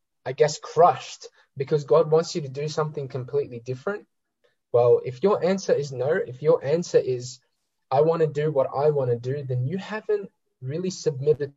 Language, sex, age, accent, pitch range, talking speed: English, male, 10-29, Australian, 135-185 Hz, 185 wpm